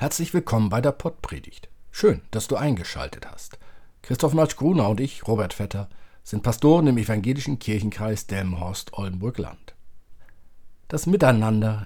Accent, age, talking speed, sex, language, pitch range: German, 50-69, 130 wpm, male, German, 100-130 Hz